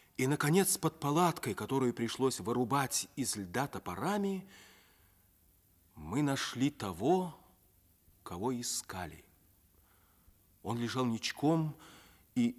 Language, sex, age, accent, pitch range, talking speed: Russian, male, 40-59, native, 90-135 Hz, 90 wpm